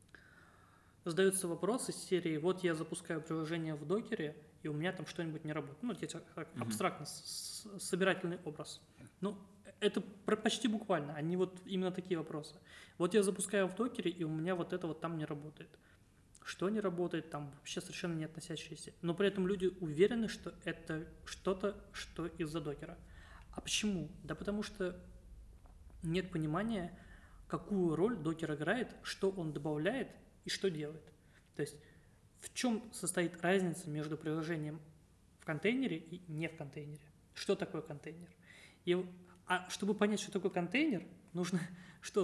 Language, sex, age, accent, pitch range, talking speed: Russian, male, 20-39, native, 155-190 Hz, 155 wpm